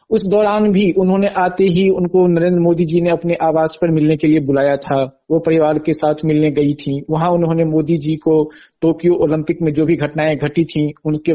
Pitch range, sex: 155-185 Hz, male